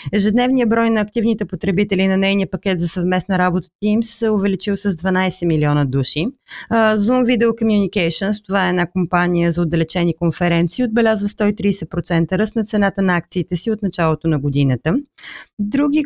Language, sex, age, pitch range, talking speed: Bulgarian, female, 20-39, 175-225 Hz, 155 wpm